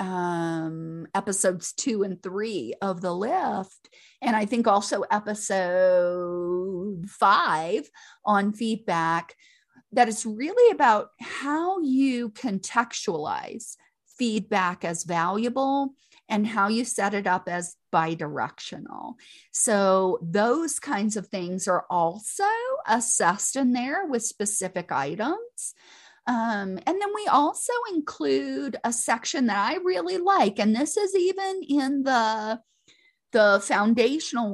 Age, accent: 40-59, American